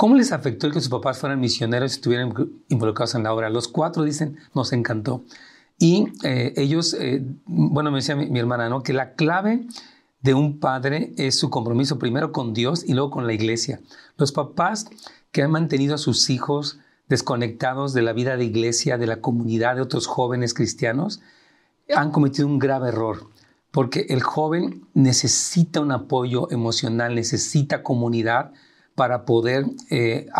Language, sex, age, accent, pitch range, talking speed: Spanish, male, 40-59, Mexican, 125-160 Hz, 170 wpm